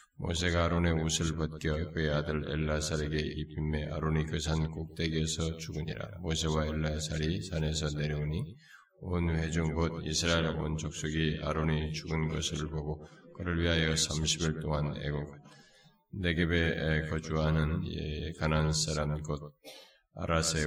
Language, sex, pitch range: Korean, male, 75-80 Hz